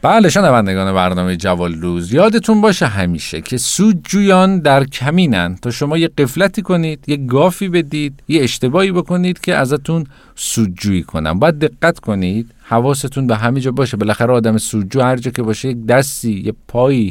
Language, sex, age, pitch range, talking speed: Persian, male, 50-69, 105-155 Hz, 160 wpm